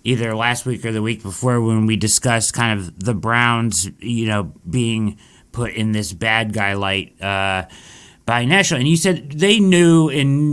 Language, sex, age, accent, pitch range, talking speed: English, male, 40-59, American, 120-180 Hz, 180 wpm